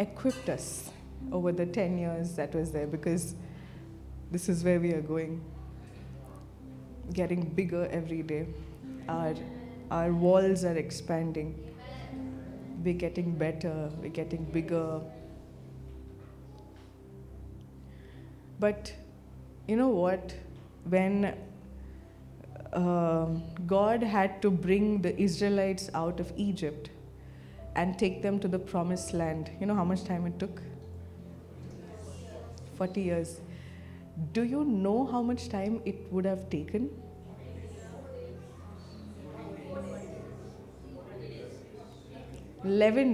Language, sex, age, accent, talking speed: English, female, 20-39, Indian, 100 wpm